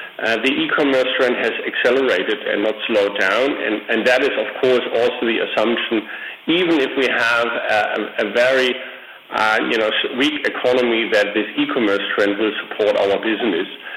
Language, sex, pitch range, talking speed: English, male, 105-130 Hz, 170 wpm